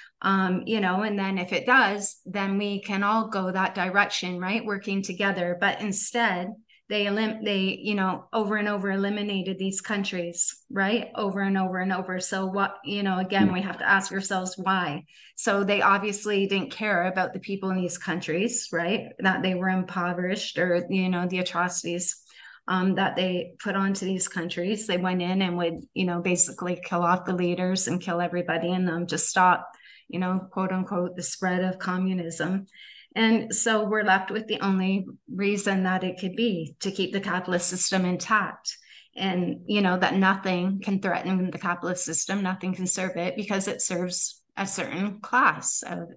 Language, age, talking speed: English, 30-49, 180 wpm